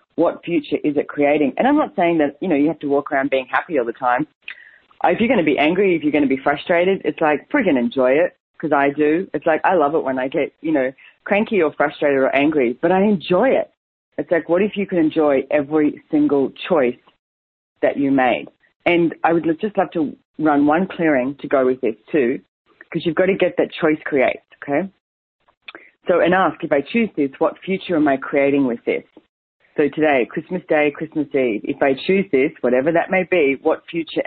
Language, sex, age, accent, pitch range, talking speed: English, female, 30-49, Australian, 140-175 Hz, 220 wpm